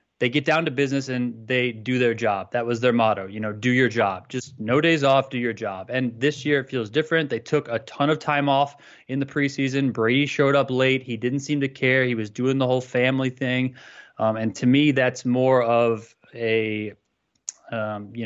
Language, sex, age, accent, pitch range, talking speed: English, male, 20-39, American, 120-145 Hz, 225 wpm